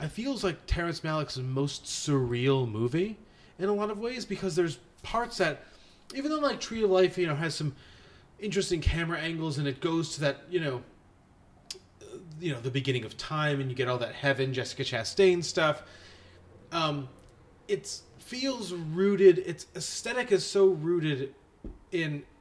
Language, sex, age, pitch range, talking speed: English, male, 30-49, 120-170 Hz, 165 wpm